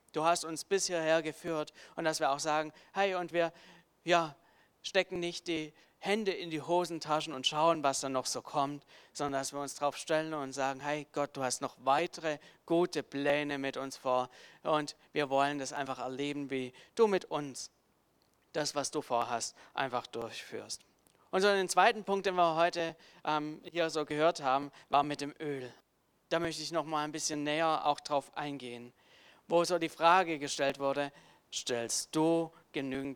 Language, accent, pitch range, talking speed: German, German, 130-160 Hz, 180 wpm